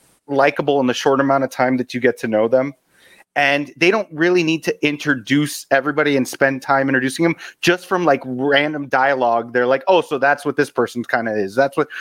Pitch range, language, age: 130-155 Hz, English, 30-49